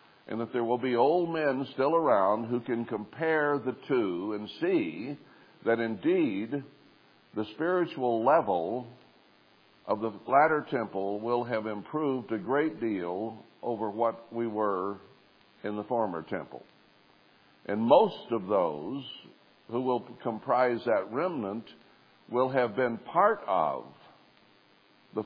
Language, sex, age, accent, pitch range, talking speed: English, male, 60-79, American, 105-140 Hz, 130 wpm